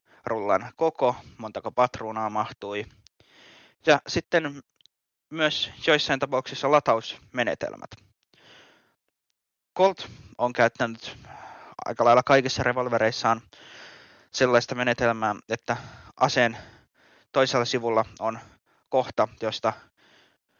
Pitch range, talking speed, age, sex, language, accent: 110-130 Hz, 80 wpm, 20-39, male, Finnish, native